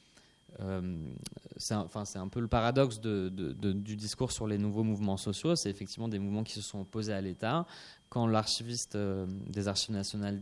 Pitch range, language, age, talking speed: 105-125 Hz, French, 20-39, 200 wpm